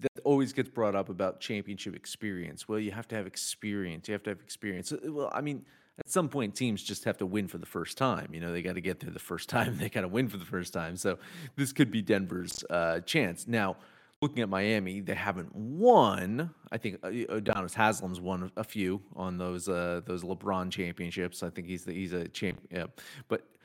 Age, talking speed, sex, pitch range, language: 30-49, 225 wpm, male, 95-135 Hz, English